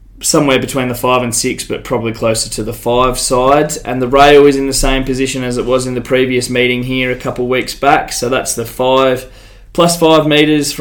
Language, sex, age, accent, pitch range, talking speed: English, male, 20-39, Australian, 120-140 Hz, 220 wpm